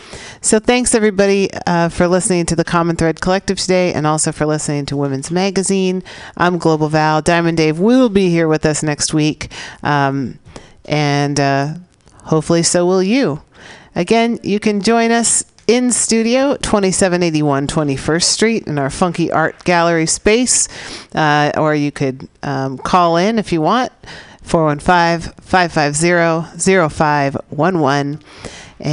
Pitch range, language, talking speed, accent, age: 145-180 Hz, English, 135 wpm, American, 40-59